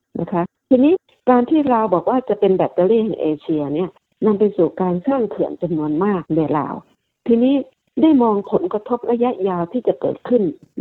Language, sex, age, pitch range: Thai, female, 60-79, 175-240 Hz